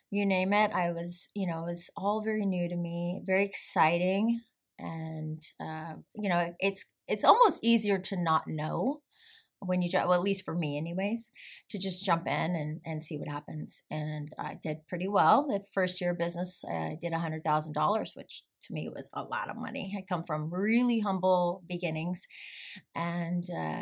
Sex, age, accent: female, 30-49, American